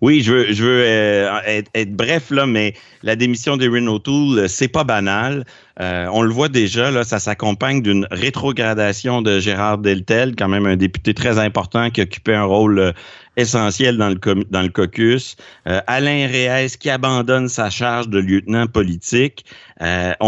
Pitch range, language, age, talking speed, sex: 100-130 Hz, French, 60-79, 175 wpm, male